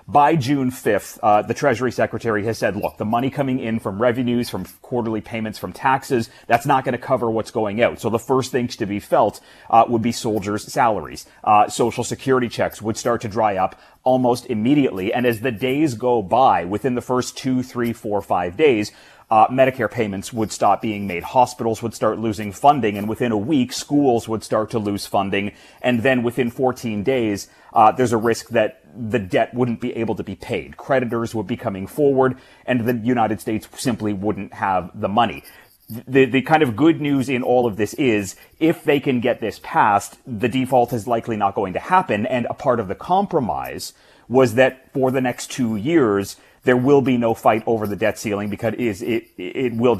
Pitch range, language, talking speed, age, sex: 110-130 Hz, English, 205 wpm, 30-49, male